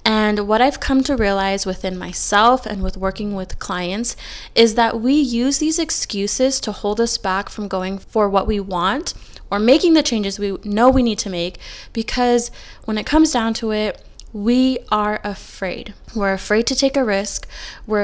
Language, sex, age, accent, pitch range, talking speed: English, female, 20-39, American, 200-245 Hz, 185 wpm